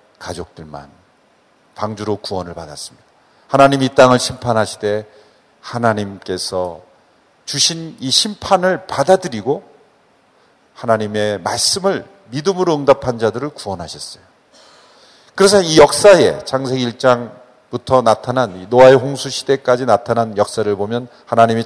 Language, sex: Korean, male